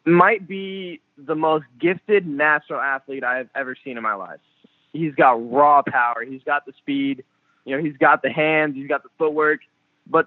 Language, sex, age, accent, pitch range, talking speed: English, male, 20-39, American, 140-165 Hz, 195 wpm